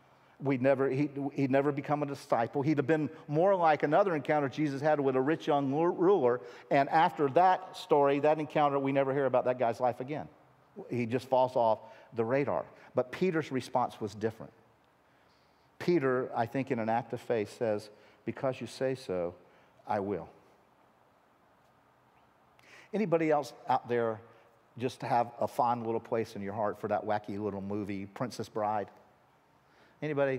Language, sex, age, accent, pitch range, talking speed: English, male, 50-69, American, 120-150 Hz, 165 wpm